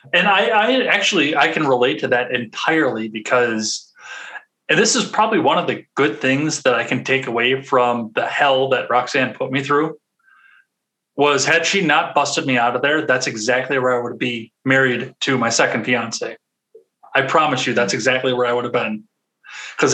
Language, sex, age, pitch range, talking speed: English, male, 30-49, 125-150 Hz, 195 wpm